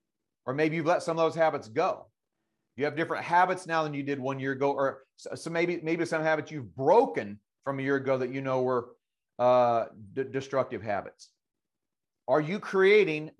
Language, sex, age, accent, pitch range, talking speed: English, male, 40-59, American, 130-170 Hz, 195 wpm